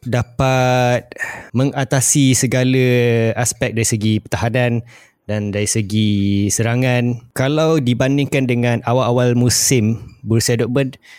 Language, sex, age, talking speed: Malay, male, 20-39, 95 wpm